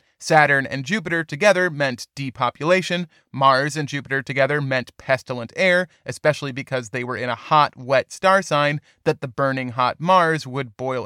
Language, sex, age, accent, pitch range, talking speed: English, male, 30-49, American, 135-180 Hz, 165 wpm